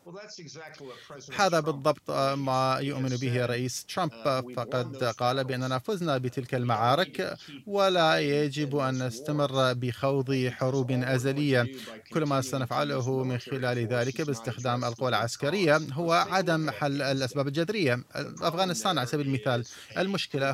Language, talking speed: Arabic, 115 wpm